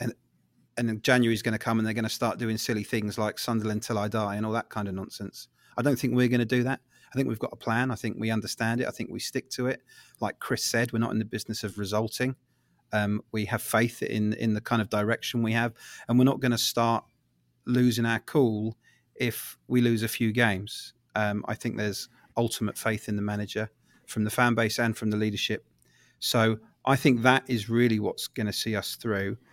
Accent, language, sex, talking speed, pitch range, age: British, English, male, 235 wpm, 105-120 Hz, 30-49